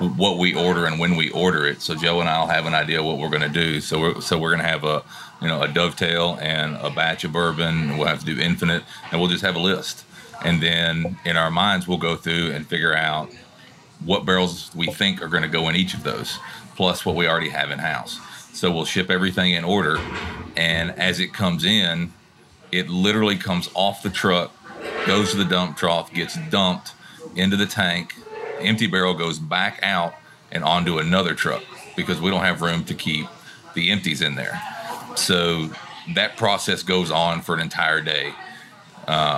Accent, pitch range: American, 80-90 Hz